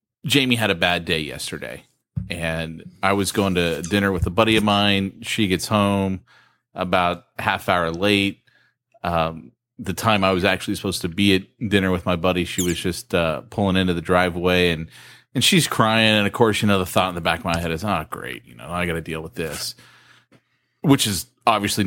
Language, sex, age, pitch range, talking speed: English, male, 30-49, 90-105 Hz, 210 wpm